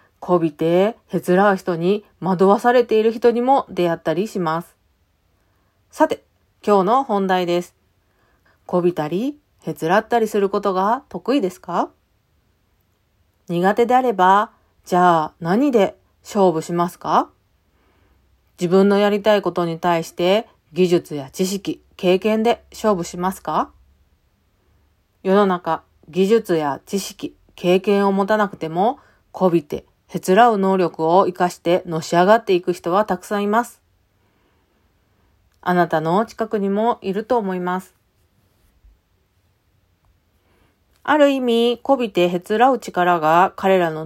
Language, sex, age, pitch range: Japanese, female, 40-59, 145-205 Hz